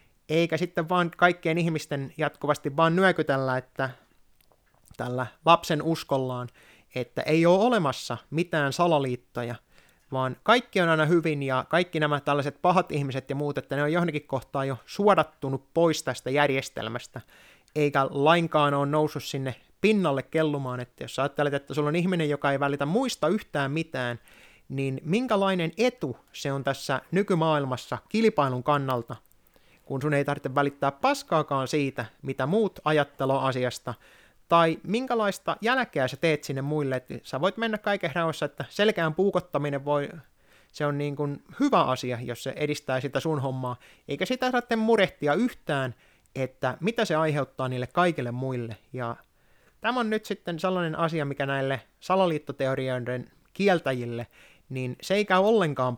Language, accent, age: Finnish, native, 30-49